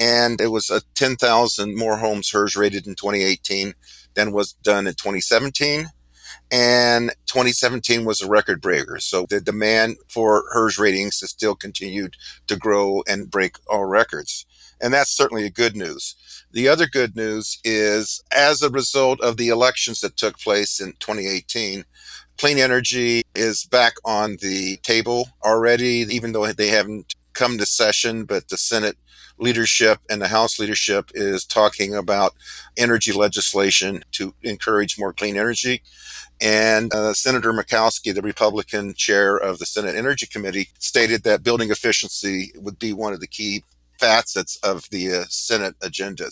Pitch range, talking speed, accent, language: 100-120 Hz, 155 wpm, American, English